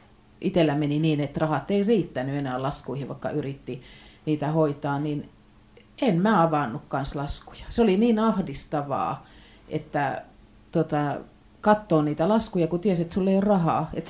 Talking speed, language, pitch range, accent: 150 wpm, Finnish, 140-180 Hz, native